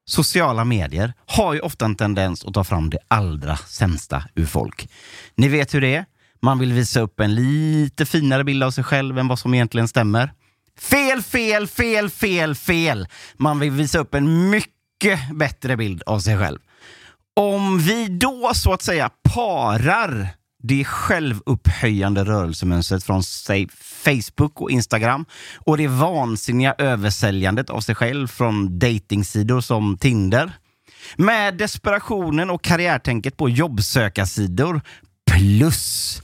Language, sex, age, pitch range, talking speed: Swedish, male, 30-49, 105-150 Hz, 140 wpm